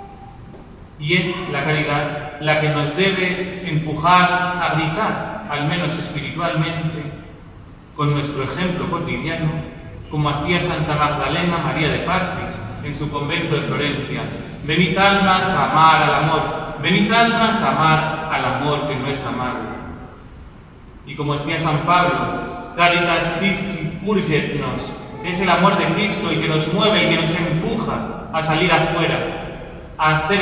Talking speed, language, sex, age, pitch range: 140 wpm, English, male, 40-59, 150-180 Hz